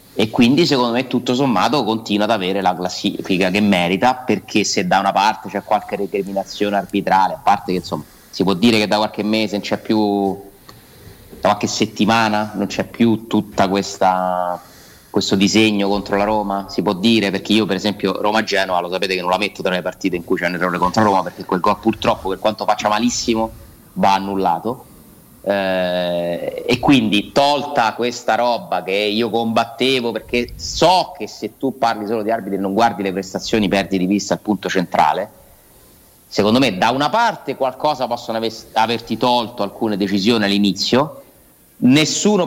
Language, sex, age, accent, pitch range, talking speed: Italian, male, 30-49, native, 100-115 Hz, 175 wpm